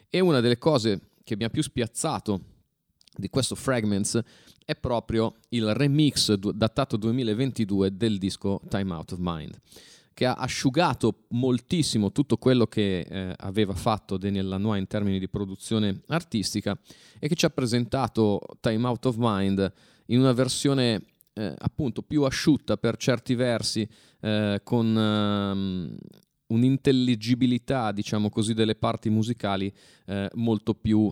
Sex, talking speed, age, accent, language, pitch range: male, 135 wpm, 30-49, native, Italian, 100-125 Hz